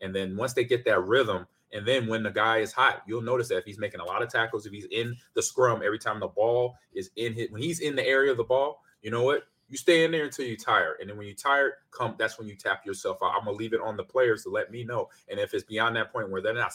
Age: 30-49